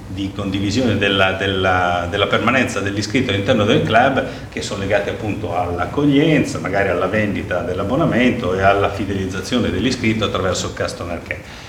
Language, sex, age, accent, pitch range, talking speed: Italian, male, 40-59, native, 100-115 Hz, 140 wpm